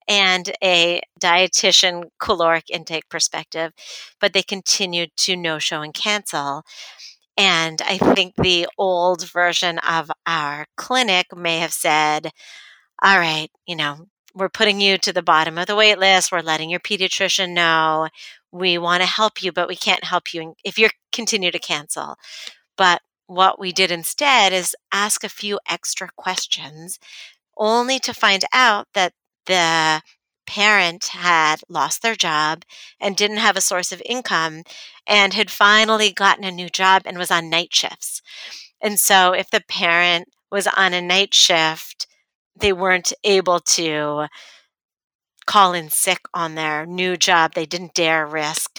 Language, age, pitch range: English, 40-59, 165-200 Hz